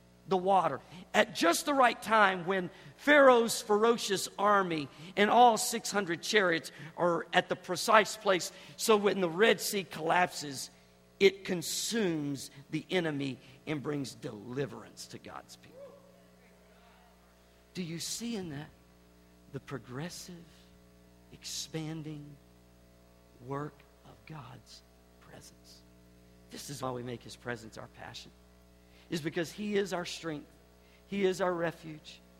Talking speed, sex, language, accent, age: 125 wpm, male, English, American, 50-69